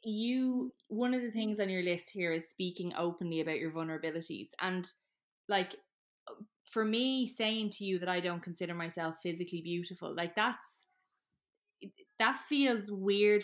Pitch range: 170-210 Hz